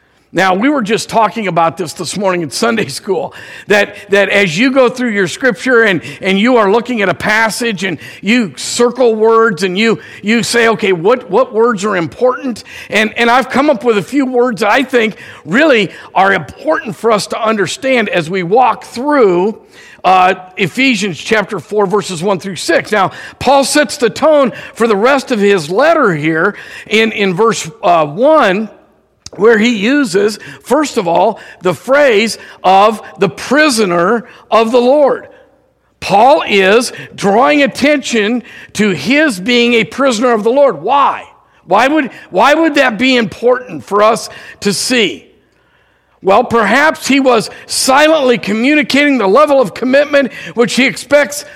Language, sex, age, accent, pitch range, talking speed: English, male, 50-69, American, 200-255 Hz, 165 wpm